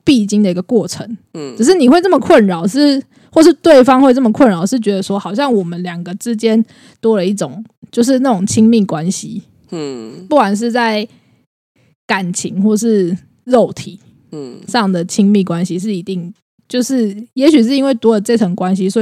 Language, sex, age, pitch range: Chinese, female, 20-39, 190-245 Hz